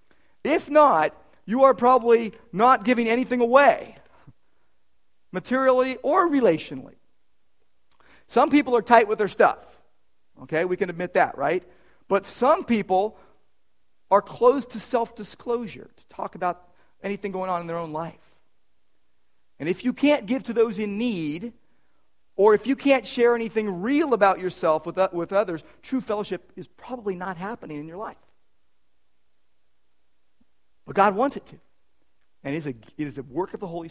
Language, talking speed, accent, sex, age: English, 155 wpm, American, male, 40-59